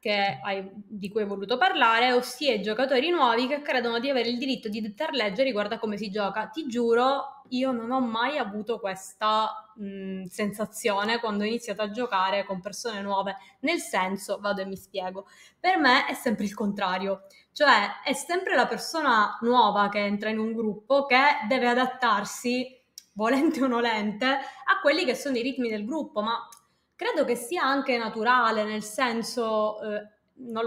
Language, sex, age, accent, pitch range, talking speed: Italian, female, 20-39, native, 210-255 Hz, 175 wpm